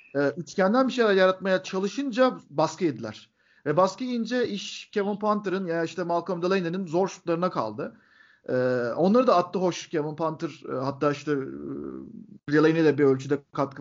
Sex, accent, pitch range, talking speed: male, native, 155-210 Hz, 155 wpm